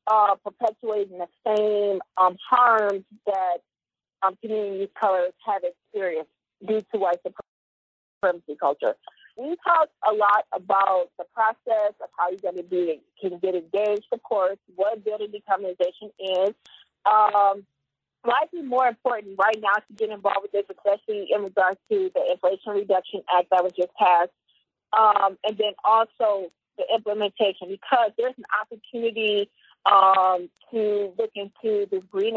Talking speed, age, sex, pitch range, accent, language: 150 wpm, 30-49, female, 190-225 Hz, American, English